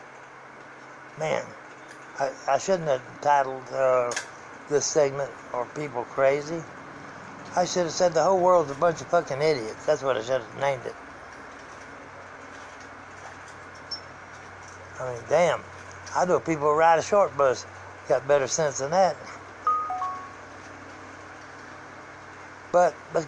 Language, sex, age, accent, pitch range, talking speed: English, male, 60-79, American, 140-175 Hz, 125 wpm